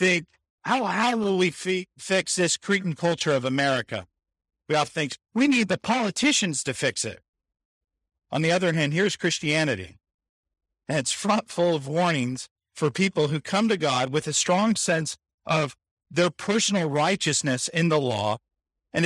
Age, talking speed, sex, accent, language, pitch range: 50-69, 160 wpm, male, American, English, 145-210 Hz